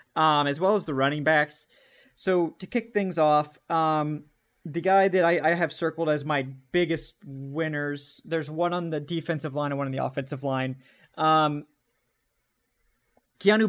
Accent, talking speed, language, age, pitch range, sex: American, 165 wpm, English, 20-39, 145-170 Hz, male